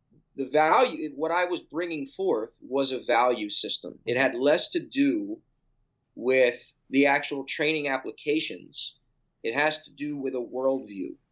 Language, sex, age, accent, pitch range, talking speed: English, male, 30-49, American, 135-165 Hz, 150 wpm